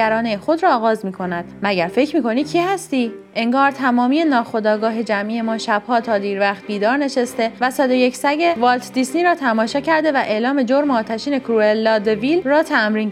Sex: female